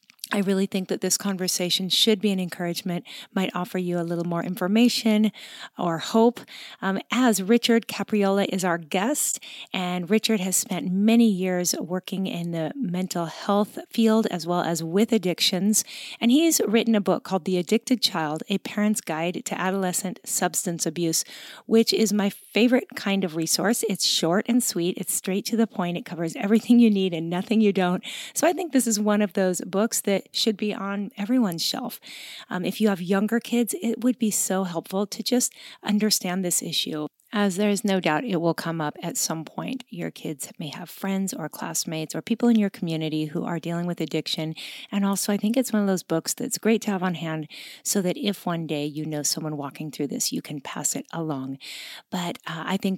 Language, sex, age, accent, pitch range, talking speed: English, female, 30-49, American, 170-220 Hz, 205 wpm